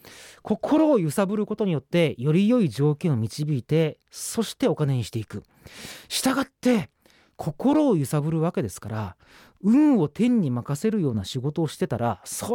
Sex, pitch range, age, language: male, 135-205 Hz, 40-59, Japanese